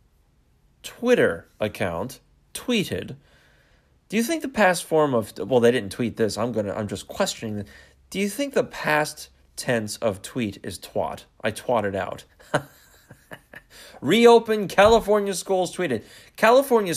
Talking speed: 140 wpm